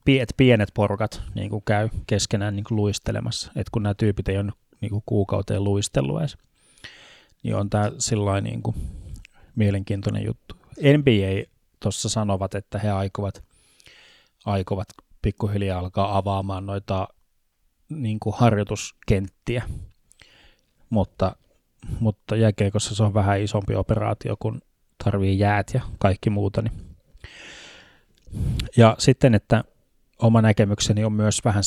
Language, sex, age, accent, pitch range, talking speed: Finnish, male, 20-39, native, 100-110 Hz, 125 wpm